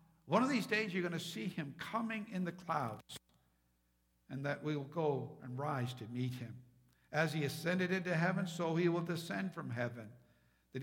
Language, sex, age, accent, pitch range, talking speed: English, male, 60-79, American, 135-190 Hz, 195 wpm